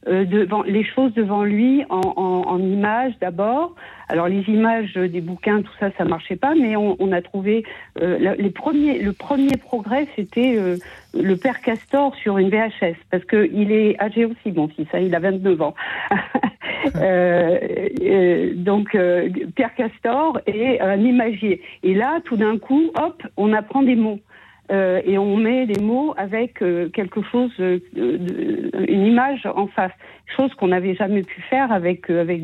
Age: 60-79